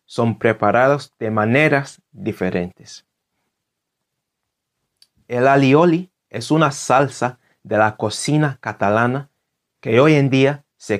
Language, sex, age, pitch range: Spanish, male, 30-49, 105-140 Hz